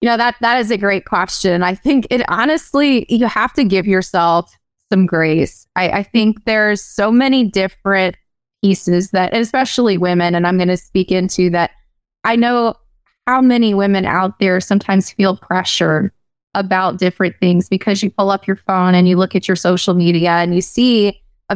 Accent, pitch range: American, 185-220 Hz